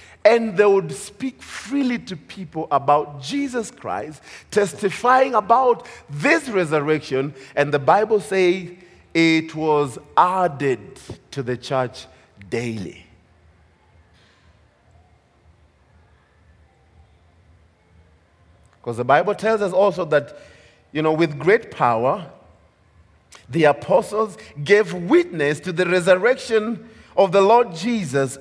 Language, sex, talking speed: English, male, 100 wpm